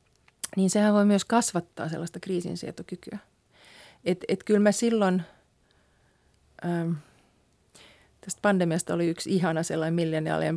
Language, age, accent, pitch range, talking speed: Finnish, 30-49, native, 170-205 Hz, 115 wpm